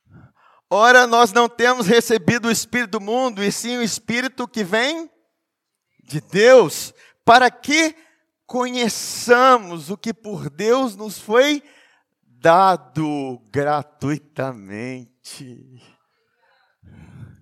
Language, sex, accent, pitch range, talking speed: Portuguese, male, Brazilian, 150-235 Hz, 95 wpm